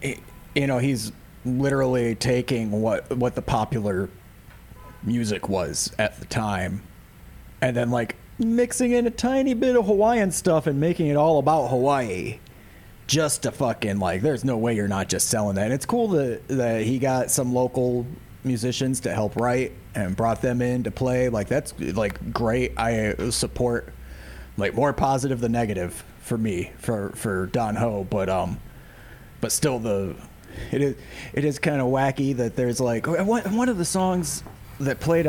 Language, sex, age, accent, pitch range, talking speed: English, male, 30-49, American, 105-130 Hz, 170 wpm